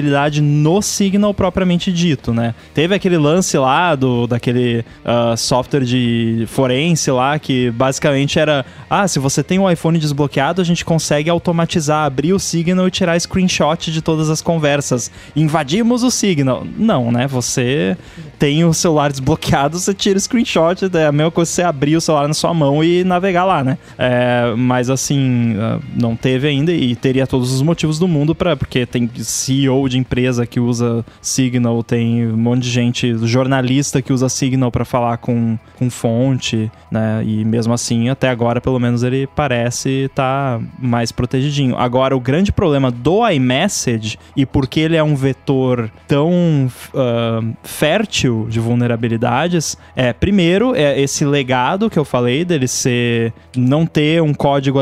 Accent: Brazilian